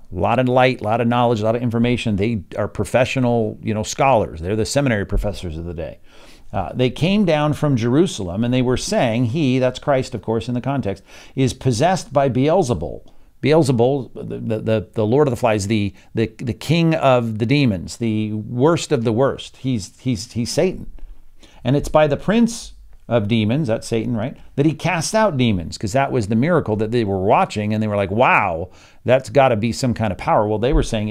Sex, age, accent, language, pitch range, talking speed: male, 50-69, American, English, 110-135 Hz, 220 wpm